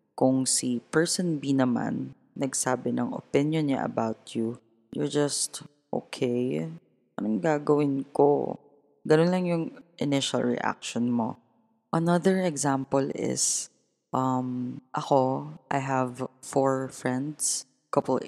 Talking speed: 110 wpm